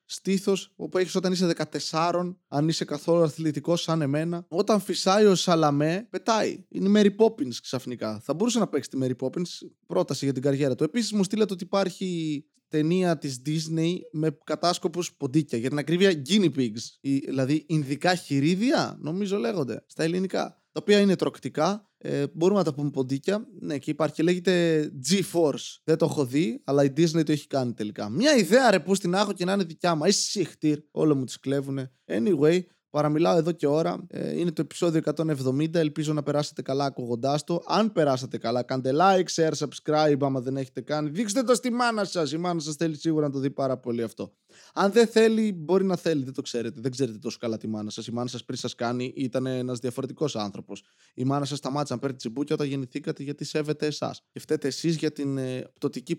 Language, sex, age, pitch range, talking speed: Greek, male, 20-39, 140-180 Hz, 200 wpm